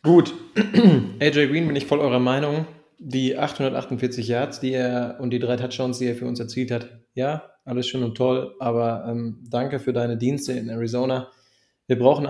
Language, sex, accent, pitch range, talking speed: German, male, German, 120-140 Hz, 185 wpm